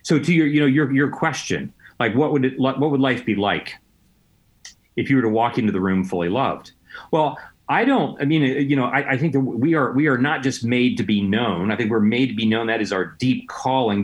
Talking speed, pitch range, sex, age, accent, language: 255 wpm, 110-145 Hz, male, 40-59, American, English